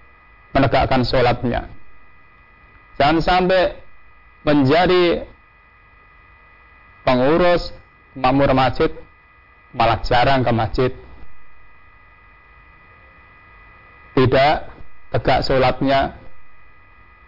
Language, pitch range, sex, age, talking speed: Indonesian, 85-135 Hz, male, 40-59, 50 wpm